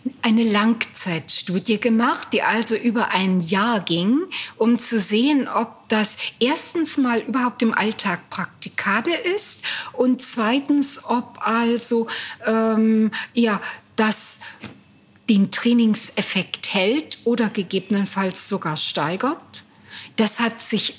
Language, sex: German, female